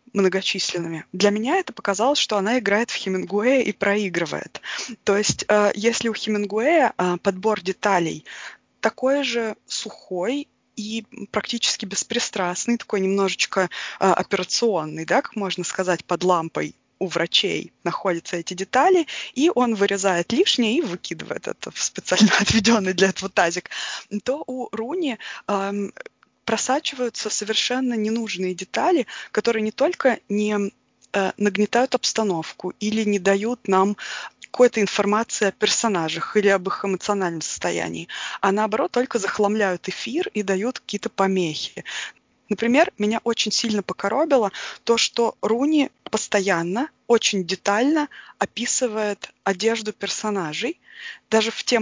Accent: native